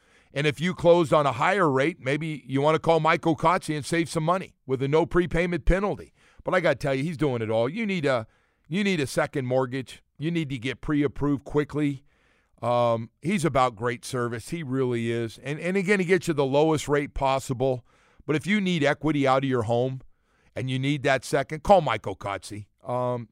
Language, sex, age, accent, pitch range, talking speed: English, male, 50-69, American, 130-170 Hz, 215 wpm